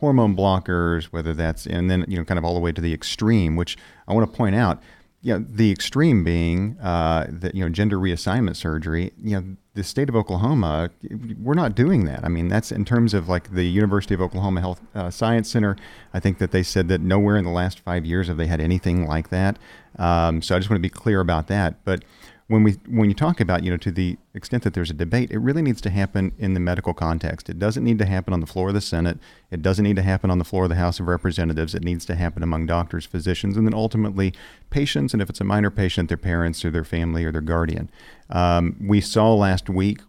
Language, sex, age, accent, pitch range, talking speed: English, male, 40-59, American, 85-105 Hz, 250 wpm